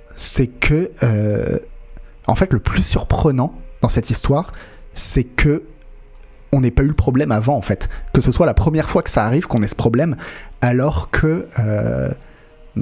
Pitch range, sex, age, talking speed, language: 110-145 Hz, male, 30-49, 175 wpm, French